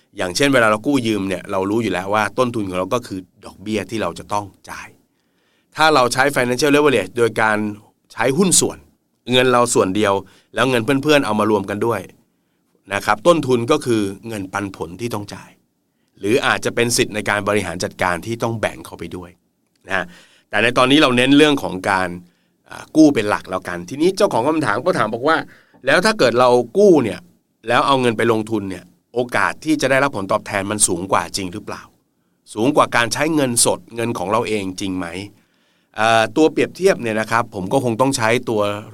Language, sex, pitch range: Thai, male, 100-125 Hz